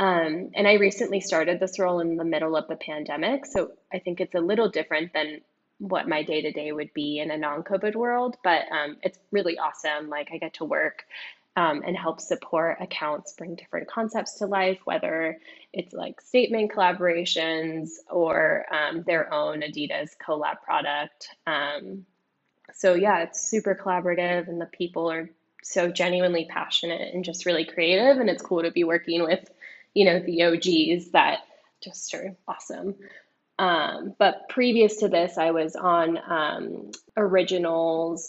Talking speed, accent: 165 wpm, American